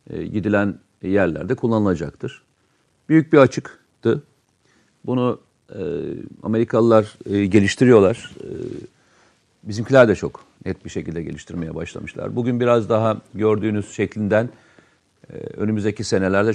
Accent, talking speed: native, 100 wpm